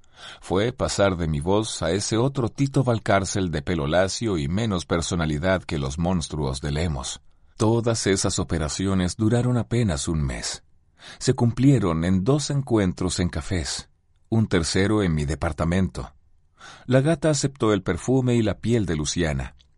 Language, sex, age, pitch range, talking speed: Spanish, male, 40-59, 80-115 Hz, 150 wpm